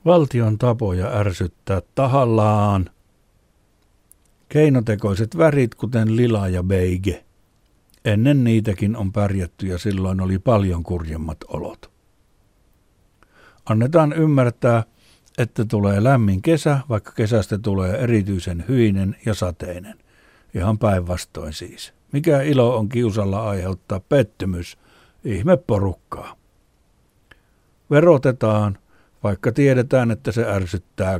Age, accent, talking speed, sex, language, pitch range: 60-79, native, 95 wpm, male, Finnish, 95-120 Hz